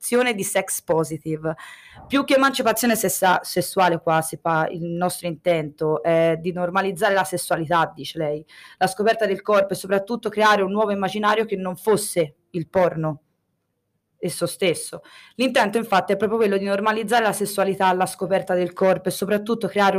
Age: 20-39